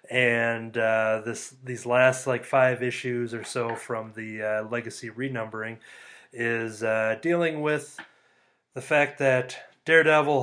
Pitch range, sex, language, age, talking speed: 115-135 Hz, male, English, 30-49, 130 wpm